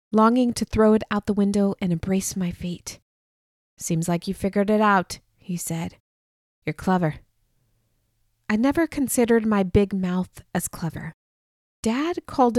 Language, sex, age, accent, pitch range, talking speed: English, female, 20-39, American, 180-225 Hz, 150 wpm